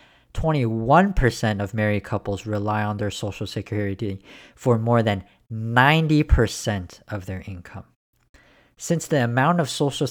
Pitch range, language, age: 105-140 Hz, English, 40-59